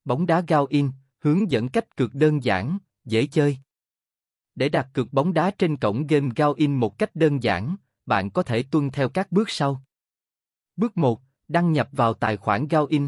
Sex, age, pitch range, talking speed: male, 20-39, 115-160 Hz, 195 wpm